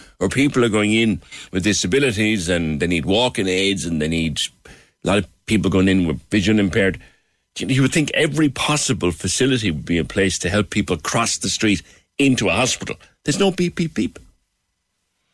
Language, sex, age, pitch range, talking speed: English, male, 60-79, 95-135 Hz, 190 wpm